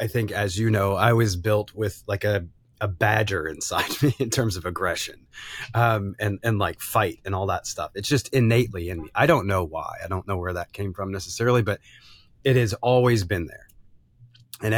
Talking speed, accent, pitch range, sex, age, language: 210 wpm, American, 105-125 Hz, male, 30-49, English